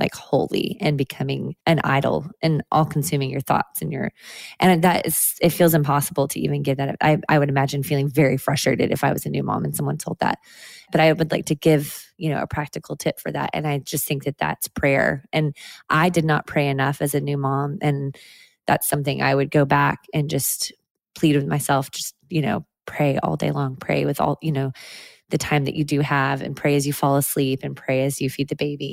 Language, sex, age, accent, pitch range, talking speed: English, female, 20-39, American, 140-155 Hz, 235 wpm